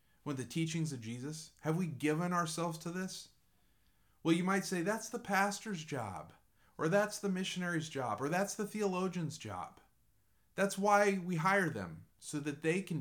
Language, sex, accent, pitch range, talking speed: English, male, American, 110-165 Hz, 175 wpm